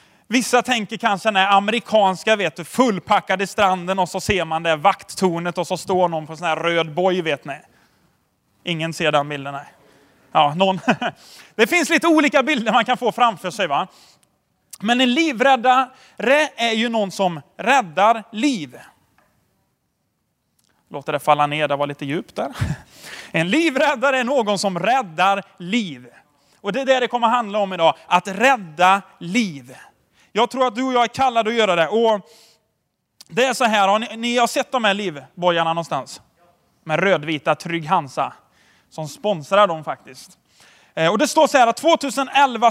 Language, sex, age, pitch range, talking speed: Swedish, male, 30-49, 180-250 Hz, 170 wpm